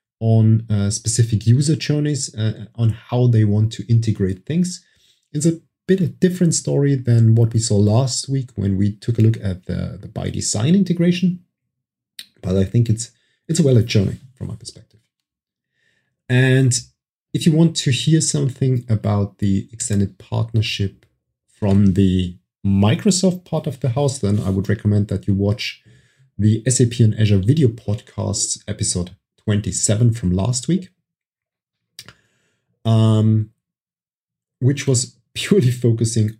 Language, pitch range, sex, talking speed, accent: English, 105-135 Hz, male, 145 wpm, German